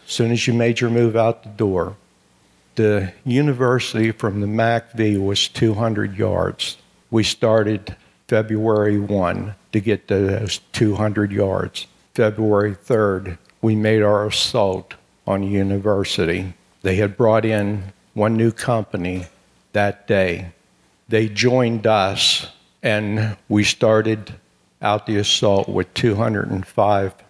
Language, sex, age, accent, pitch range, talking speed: English, male, 60-79, American, 100-115 Hz, 125 wpm